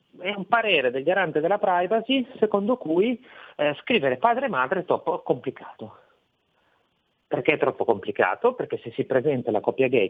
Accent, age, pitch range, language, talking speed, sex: native, 40-59, 120-200 Hz, Italian, 165 wpm, male